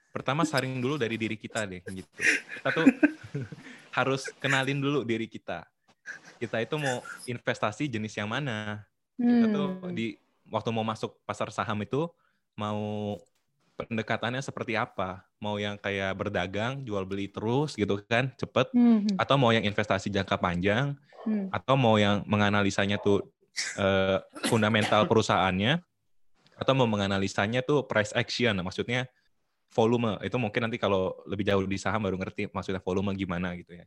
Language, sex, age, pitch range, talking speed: Indonesian, male, 20-39, 100-130 Hz, 145 wpm